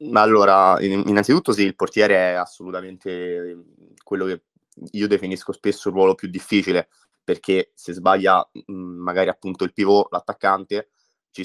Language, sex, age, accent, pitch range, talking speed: Italian, male, 20-39, native, 90-100 Hz, 140 wpm